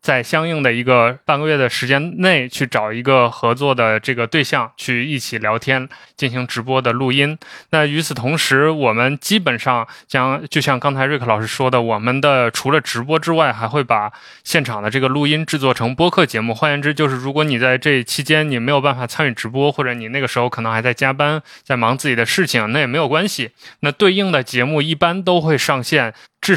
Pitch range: 120-145 Hz